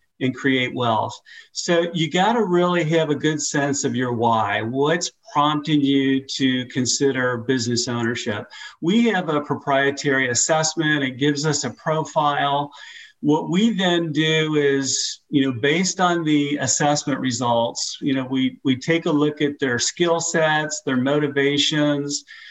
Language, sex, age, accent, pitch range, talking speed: English, male, 50-69, American, 130-155 Hz, 150 wpm